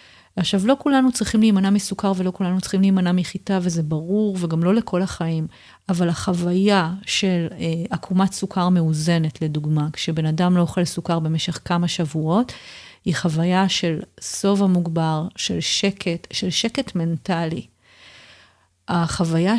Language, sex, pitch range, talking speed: Hebrew, female, 165-205 Hz, 135 wpm